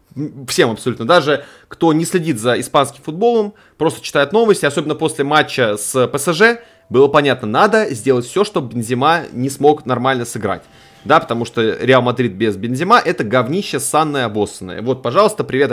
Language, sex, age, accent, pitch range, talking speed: Russian, male, 20-39, native, 115-155 Hz, 160 wpm